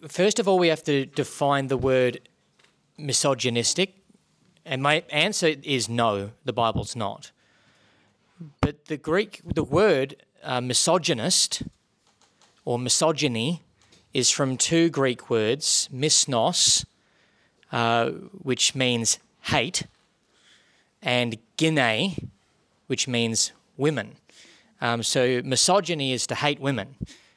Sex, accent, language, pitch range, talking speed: male, Australian, English, 125-160 Hz, 105 wpm